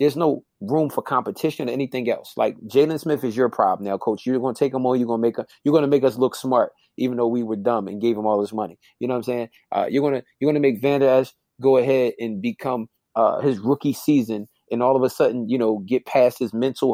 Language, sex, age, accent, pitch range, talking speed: English, male, 30-49, American, 115-135 Hz, 260 wpm